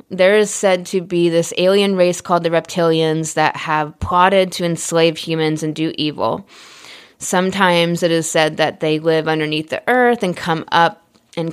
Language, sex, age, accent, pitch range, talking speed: English, female, 20-39, American, 155-175 Hz, 175 wpm